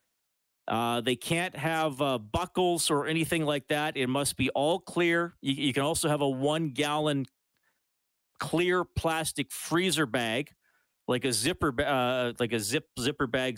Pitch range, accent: 115-145 Hz, American